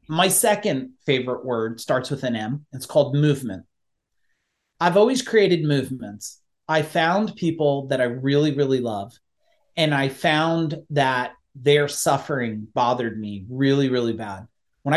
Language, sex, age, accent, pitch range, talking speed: English, male, 40-59, American, 125-160 Hz, 140 wpm